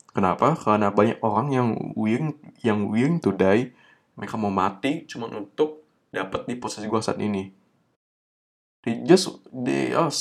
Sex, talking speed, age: male, 145 wpm, 20-39